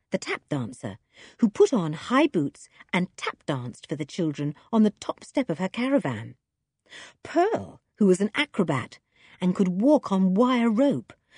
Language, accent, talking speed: English, British, 170 wpm